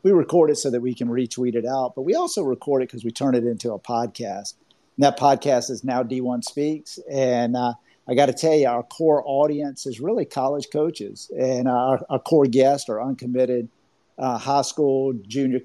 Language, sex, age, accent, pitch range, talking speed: English, male, 50-69, American, 120-140 Hz, 210 wpm